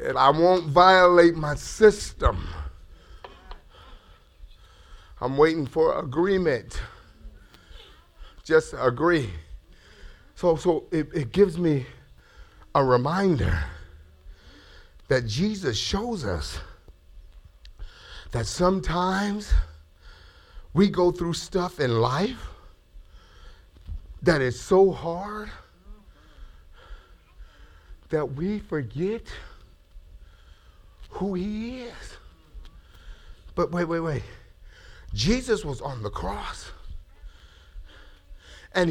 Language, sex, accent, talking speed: English, male, American, 80 wpm